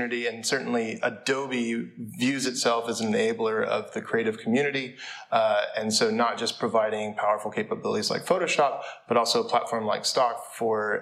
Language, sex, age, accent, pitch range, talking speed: Romanian, male, 20-39, American, 110-140 Hz, 150 wpm